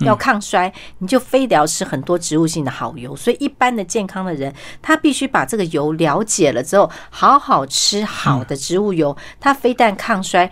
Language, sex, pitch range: Chinese, female, 160-215 Hz